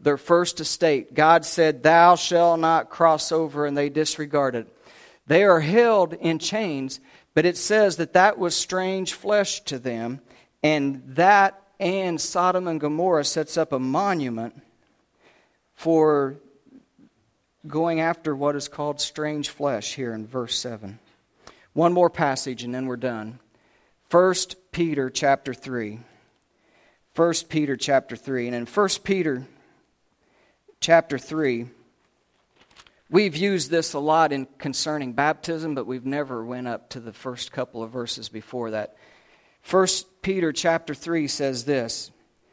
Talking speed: 140 wpm